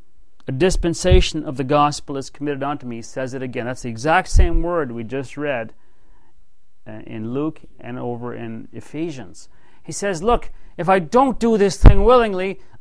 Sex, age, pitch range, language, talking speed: male, 40-59, 130-180 Hz, English, 175 wpm